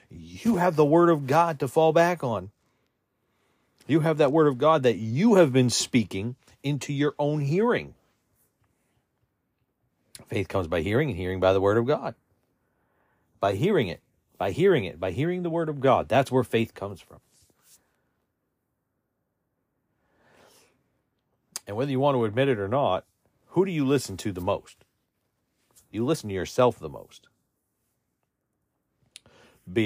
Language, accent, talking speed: English, American, 155 wpm